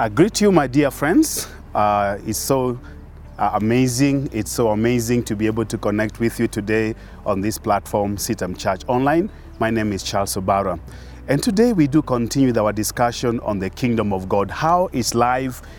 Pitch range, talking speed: 105-145 Hz, 185 wpm